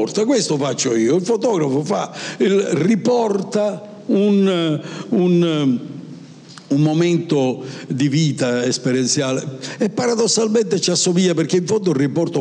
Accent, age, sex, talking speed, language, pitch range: native, 60-79, male, 95 wpm, Italian, 140-185 Hz